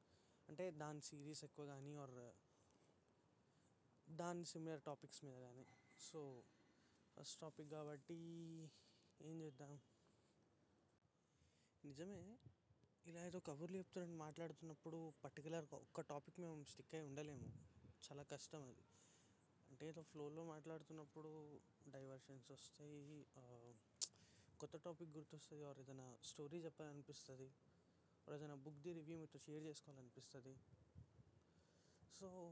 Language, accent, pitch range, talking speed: Telugu, native, 130-165 Hz, 100 wpm